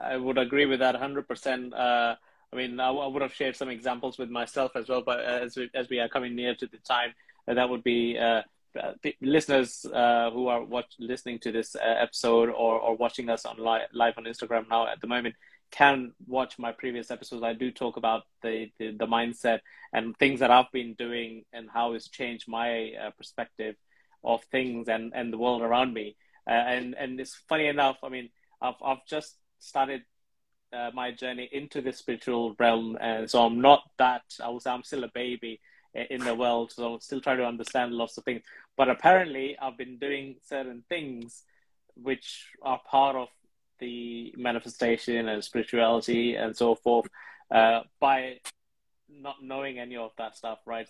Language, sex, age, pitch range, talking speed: English, male, 20-39, 115-130 Hz, 195 wpm